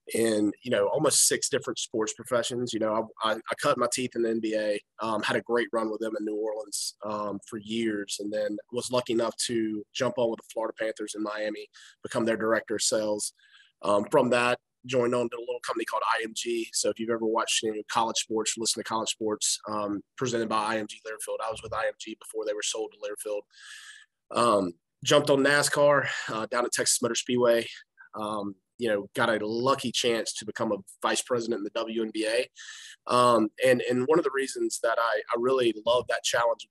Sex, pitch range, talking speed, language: male, 110-140 Hz, 210 wpm, English